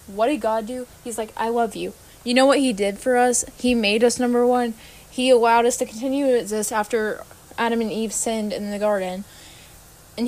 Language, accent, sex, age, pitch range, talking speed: English, American, female, 10-29, 210-255 Hz, 215 wpm